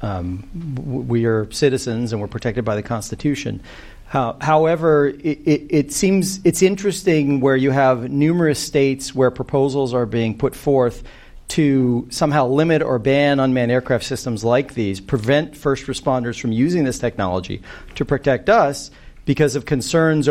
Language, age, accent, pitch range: English, 40-59, American, 120-155 Hz